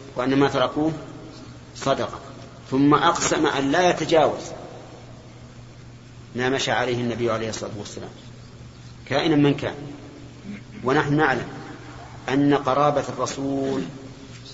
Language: Arabic